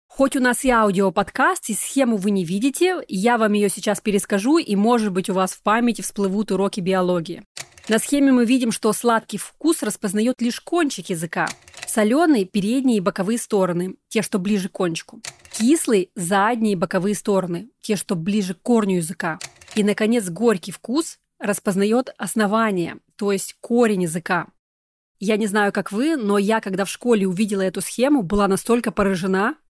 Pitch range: 195-235 Hz